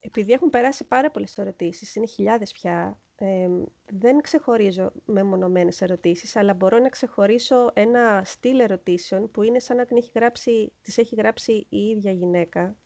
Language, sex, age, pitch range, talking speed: Greek, female, 30-49, 185-240 Hz, 155 wpm